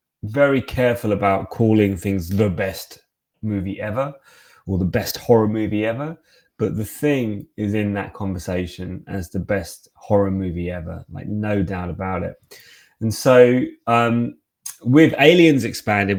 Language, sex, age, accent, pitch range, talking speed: English, male, 20-39, British, 95-115 Hz, 145 wpm